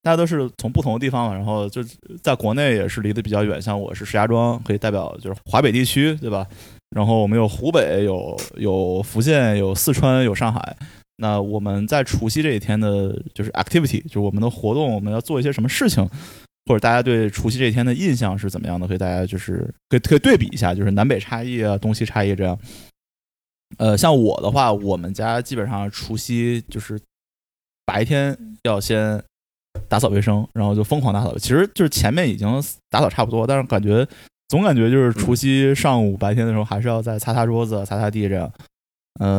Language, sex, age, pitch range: Chinese, male, 20-39, 100-120 Hz